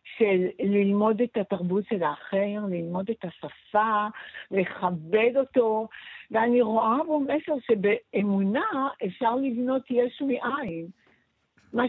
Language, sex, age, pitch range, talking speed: Hebrew, female, 60-79, 200-265 Hz, 105 wpm